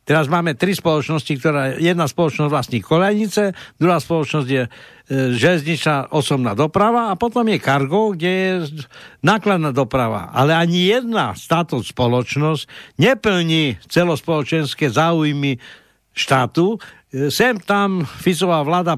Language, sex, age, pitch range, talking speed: Slovak, male, 60-79, 140-185 Hz, 125 wpm